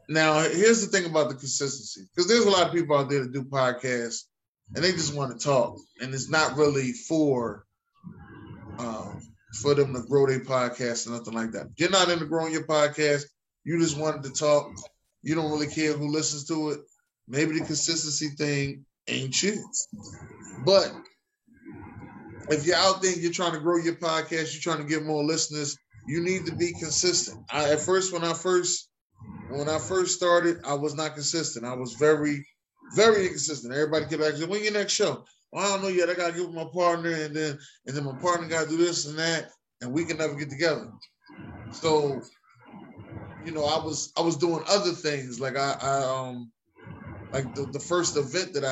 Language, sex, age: English, male, 20-39